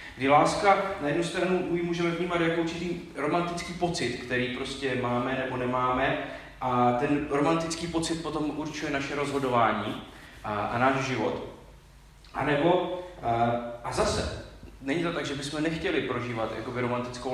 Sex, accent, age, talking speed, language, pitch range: male, native, 30-49, 145 wpm, Czech, 120-165 Hz